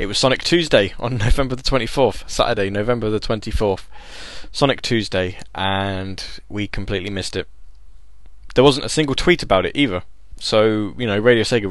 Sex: male